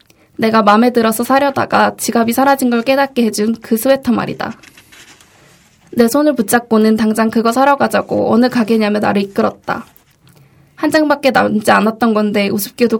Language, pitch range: Korean, 215-250 Hz